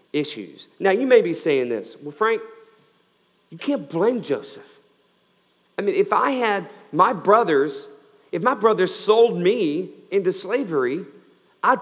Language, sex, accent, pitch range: English, male, American, 145-225 Hz